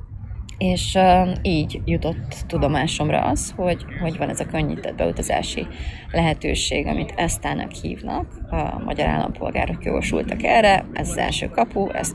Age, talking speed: 30-49, 135 wpm